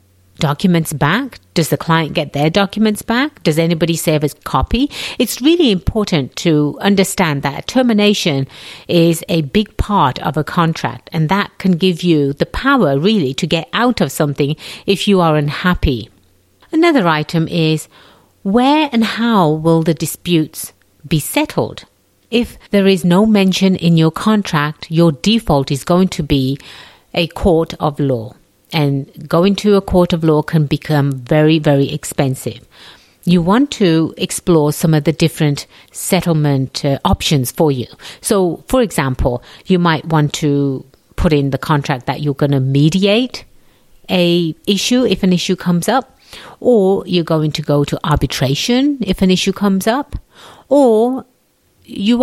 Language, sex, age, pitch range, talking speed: English, female, 50-69, 150-195 Hz, 155 wpm